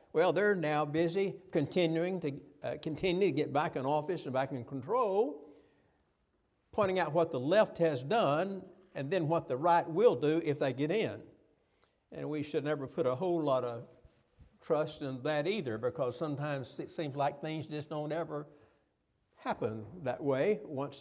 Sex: male